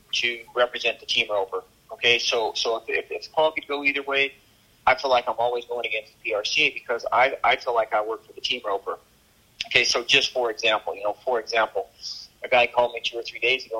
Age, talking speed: 30-49, 230 wpm